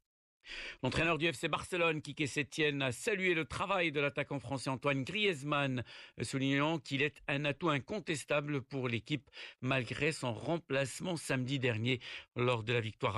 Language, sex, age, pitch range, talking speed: Arabic, male, 60-79, 125-150 Hz, 145 wpm